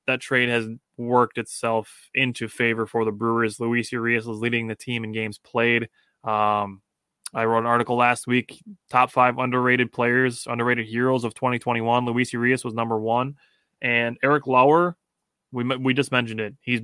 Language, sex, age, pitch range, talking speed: English, male, 20-39, 115-125 Hz, 170 wpm